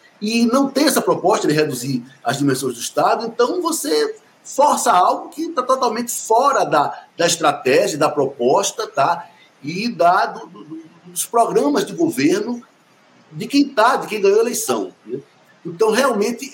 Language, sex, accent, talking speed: Portuguese, male, Brazilian, 160 wpm